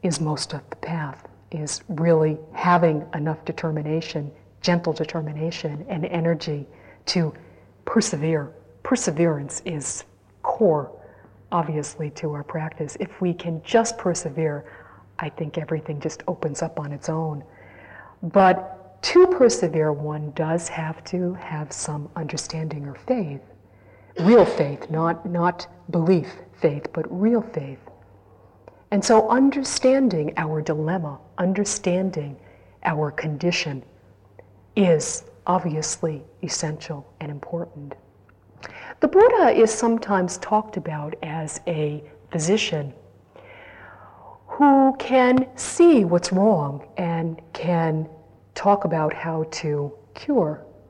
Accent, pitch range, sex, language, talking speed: American, 150-185 Hz, female, English, 110 wpm